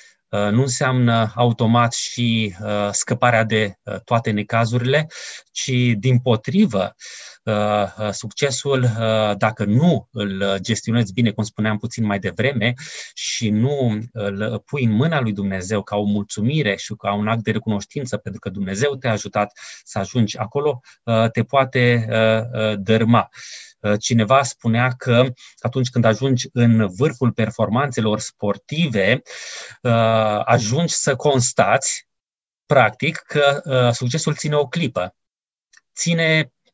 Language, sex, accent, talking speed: Romanian, male, native, 115 wpm